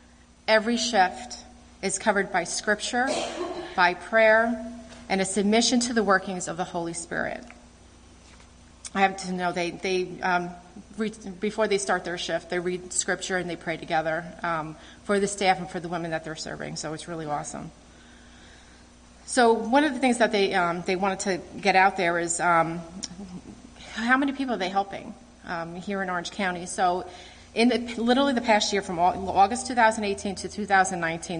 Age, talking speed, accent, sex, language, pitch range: 30-49, 175 wpm, American, female, English, 175-220 Hz